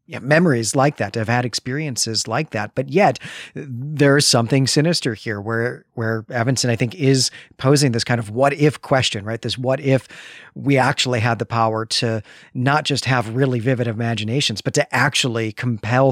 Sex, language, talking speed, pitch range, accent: male, English, 180 wpm, 115-145 Hz, American